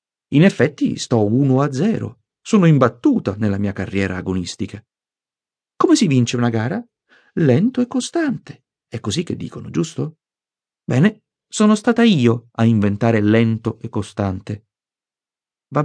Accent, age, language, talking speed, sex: native, 40-59, Italian, 135 wpm, male